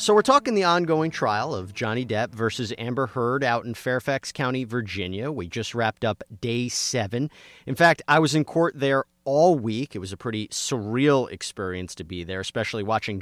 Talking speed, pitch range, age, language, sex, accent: 195 wpm, 105-145 Hz, 30-49, English, male, American